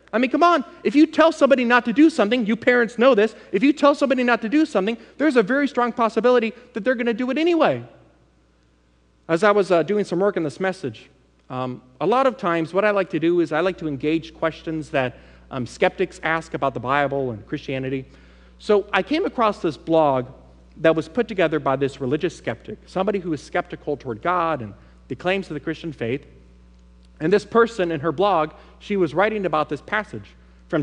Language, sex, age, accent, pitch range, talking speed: English, male, 40-59, American, 140-225 Hz, 215 wpm